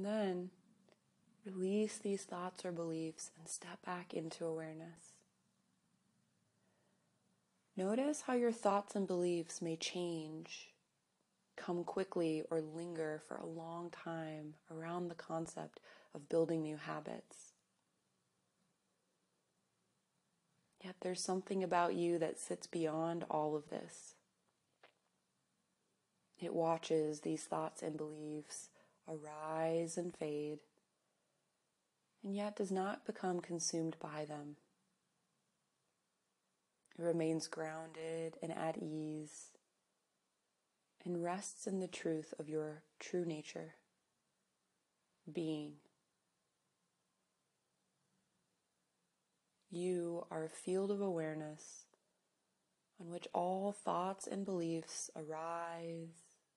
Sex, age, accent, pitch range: female, 20-39, American, 160-180 Hz